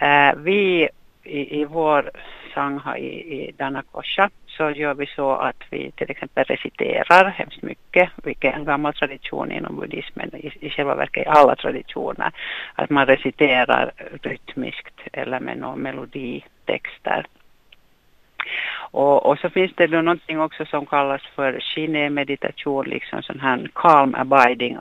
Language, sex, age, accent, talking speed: Finnish, female, 60-79, native, 140 wpm